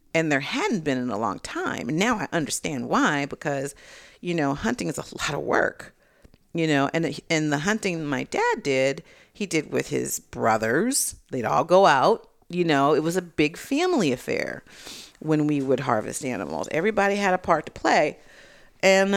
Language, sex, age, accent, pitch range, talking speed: English, female, 40-59, American, 150-195 Hz, 190 wpm